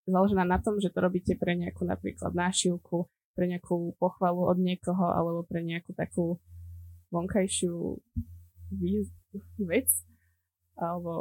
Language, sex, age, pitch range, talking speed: Slovak, female, 20-39, 170-190 Hz, 120 wpm